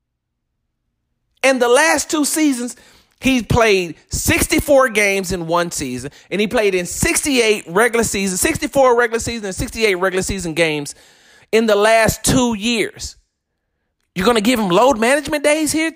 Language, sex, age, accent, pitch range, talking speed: English, male, 40-59, American, 180-265 Hz, 155 wpm